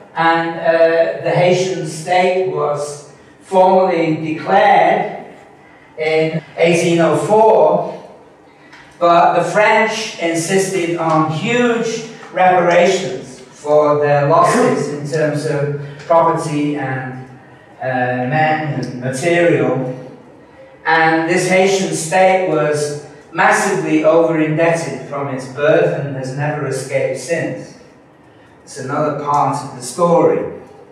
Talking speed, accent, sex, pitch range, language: 95 wpm, British, male, 150-180 Hz, English